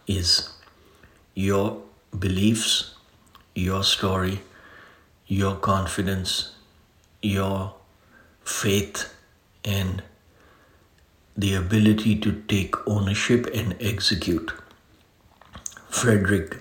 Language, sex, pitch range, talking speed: English, male, 90-105 Hz, 65 wpm